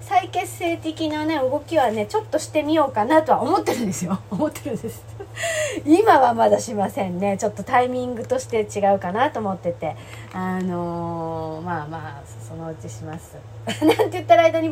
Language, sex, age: Japanese, female, 40-59